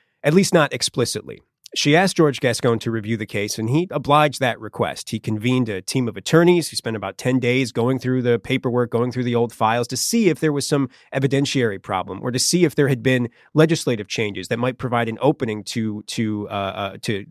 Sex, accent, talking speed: male, American, 220 wpm